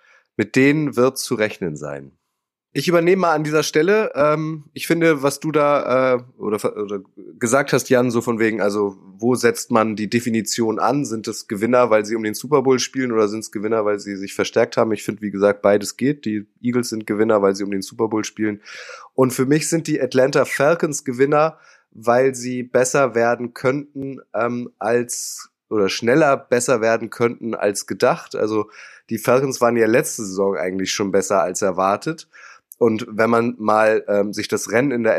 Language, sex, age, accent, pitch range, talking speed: German, male, 20-39, German, 105-135 Hz, 195 wpm